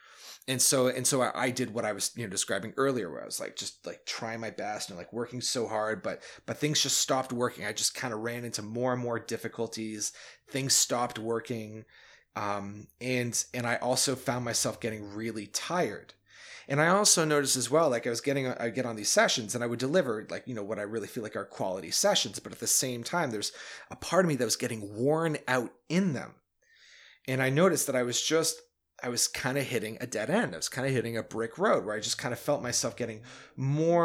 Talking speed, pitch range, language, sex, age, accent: 240 wpm, 110-140 Hz, English, male, 30-49, American